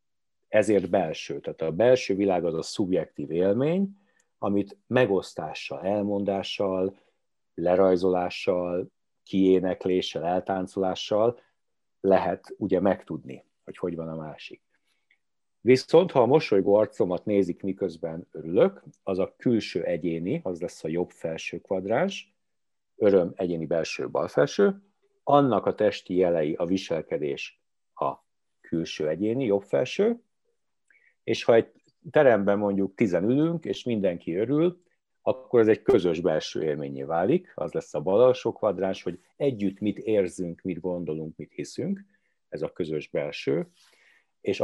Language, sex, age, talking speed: Hungarian, male, 50-69, 125 wpm